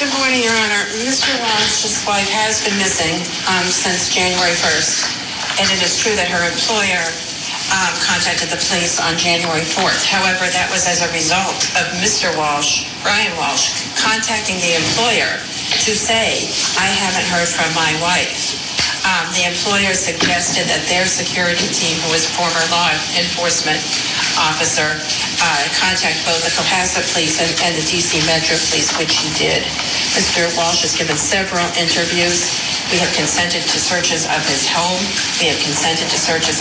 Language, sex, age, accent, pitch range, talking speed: English, female, 40-59, American, 165-195 Hz, 160 wpm